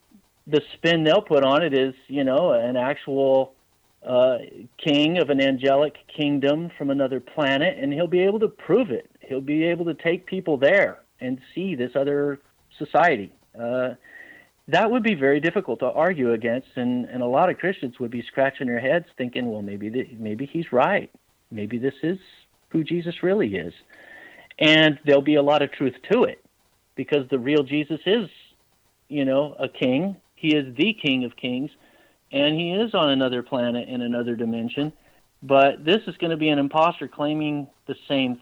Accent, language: American, English